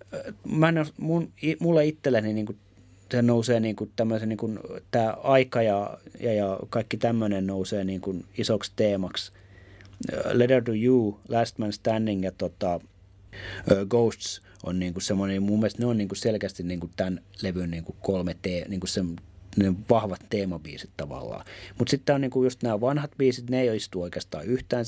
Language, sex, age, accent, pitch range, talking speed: Finnish, male, 30-49, native, 95-120 Hz, 155 wpm